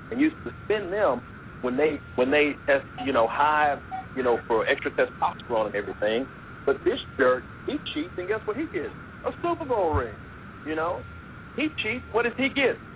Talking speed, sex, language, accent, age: 190 wpm, male, English, American, 50-69